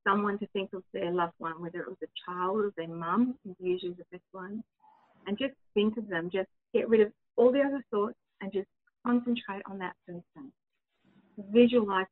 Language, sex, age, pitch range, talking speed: English, female, 30-49, 195-245 Hz, 200 wpm